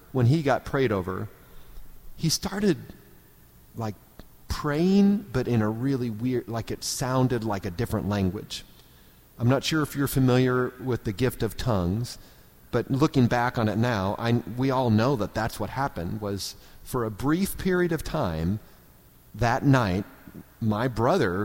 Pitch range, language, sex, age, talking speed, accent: 105-150 Hz, English, male, 40-59, 155 wpm, American